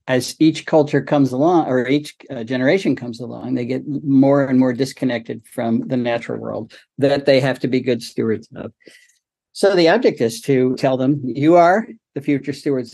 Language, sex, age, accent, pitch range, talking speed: English, male, 50-69, American, 130-175 Hz, 190 wpm